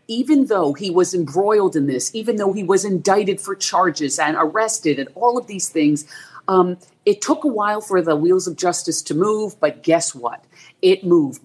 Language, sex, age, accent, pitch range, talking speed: English, female, 40-59, American, 160-225 Hz, 200 wpm